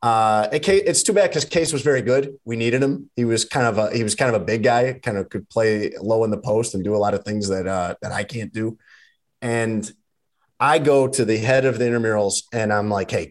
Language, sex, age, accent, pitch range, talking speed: English, male, 30-49, American, 100-125 Hz, 255 wpm